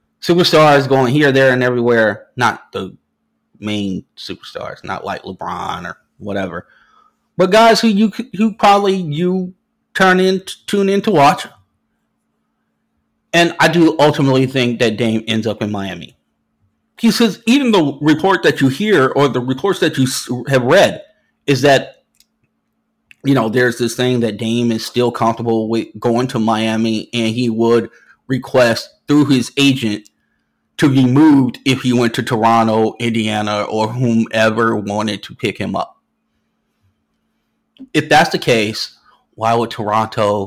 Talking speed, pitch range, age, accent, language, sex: 150 wpm, 115-150 Hz, 30-49, American, English, male